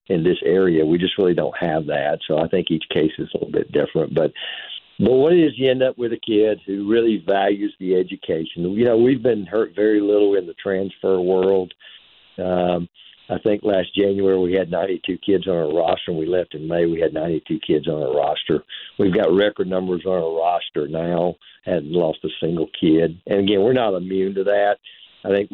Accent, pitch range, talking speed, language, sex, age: American, 90-115 Hz, 220 wpm, English, male, 50-69